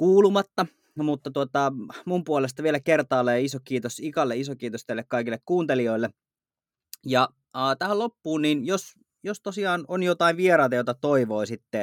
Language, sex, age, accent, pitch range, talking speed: Finnish, male, 30-49, native, 120-165 Hz, 140 wpm